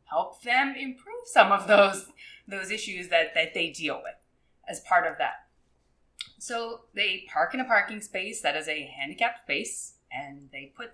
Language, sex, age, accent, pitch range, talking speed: English, female, 20-39, American, 165-235 Hz, 175 wpm